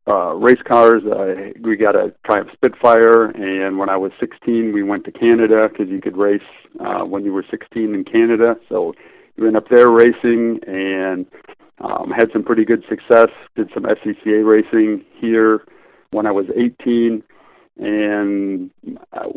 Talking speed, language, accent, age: 165 wpm, English, American, 40-59